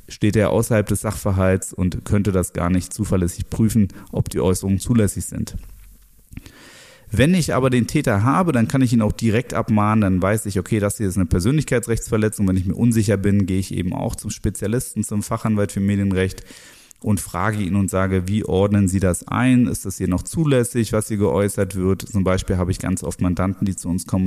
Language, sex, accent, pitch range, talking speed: German, male, German, 95-110 Hz, 210 wpm